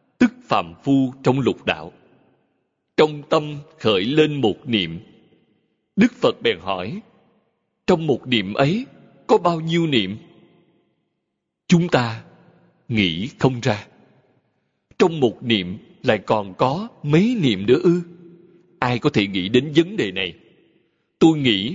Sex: male